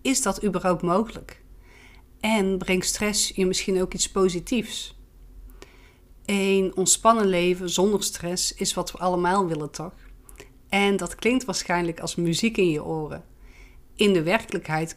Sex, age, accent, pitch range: female, 40-59, Dutch, 170-205 Hz